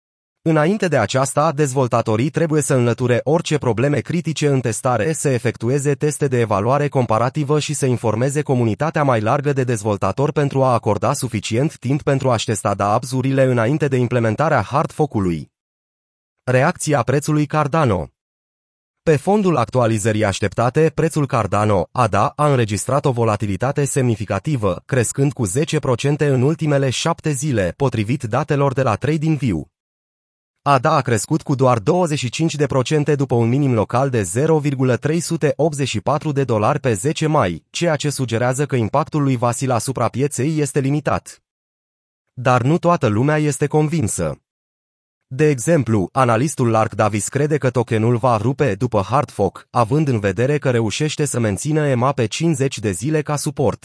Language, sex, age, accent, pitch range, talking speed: Romanian, male, 30-49, native, 115-150 Hz, 140 wpm